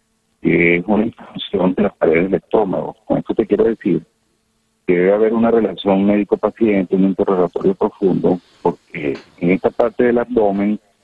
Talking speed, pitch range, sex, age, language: 165 wpm, 85-110 Hz, male, 40-59, Spanish